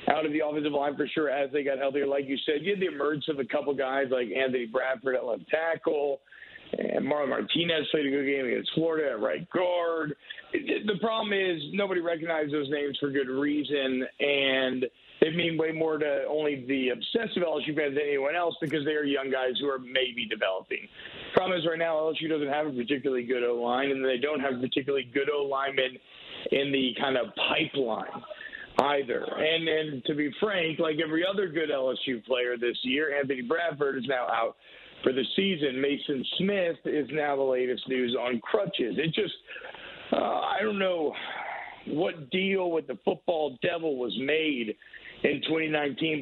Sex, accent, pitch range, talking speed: male, American, 135-165 Hz, 185 wpm